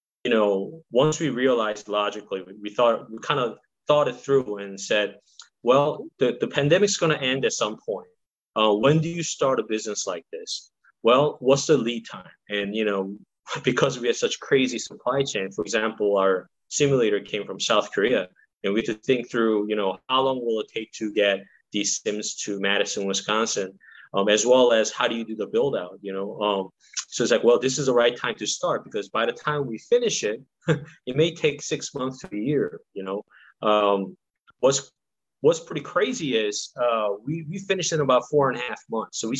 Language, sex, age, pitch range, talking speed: English, male, 20-39, 105-145 Hz, 210 wpm